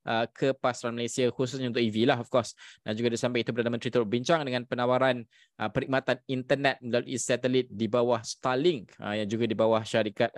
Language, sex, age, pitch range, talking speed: Malay, male, 20-39, 115-130 Hz, 195 wpm